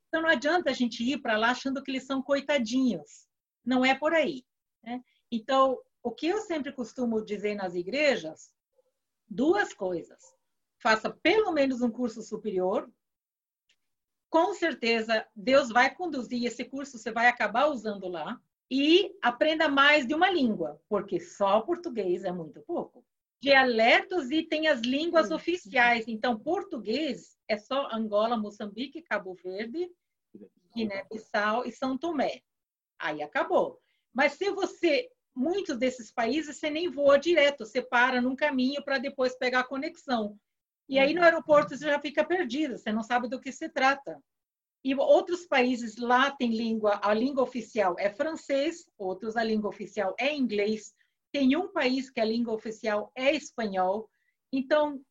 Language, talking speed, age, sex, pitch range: Portuguese, 150 wpm, 50-69, female, 225-300 Hz